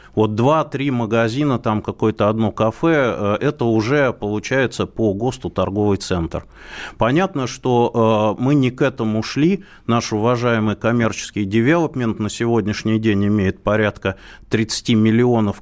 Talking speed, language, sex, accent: 125 wpm, Russian, male, native